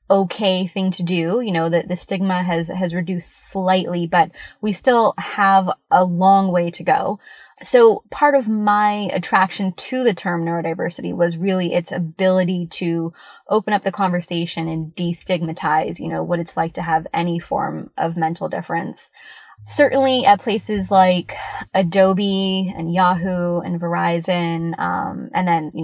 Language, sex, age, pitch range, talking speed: English, female, 20-39, 170-195 Hz, 155 wpm